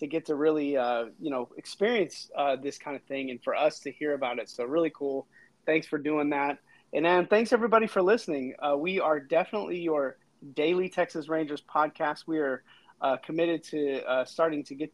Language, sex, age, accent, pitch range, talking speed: English, male, 30-49, American, 140-160 Hz, 205 wpm